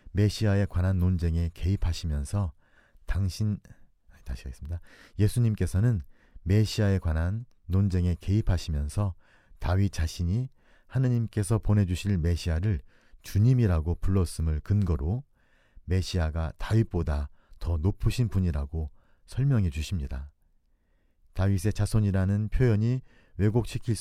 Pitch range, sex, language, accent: 80-105 Hz, male, Korean, native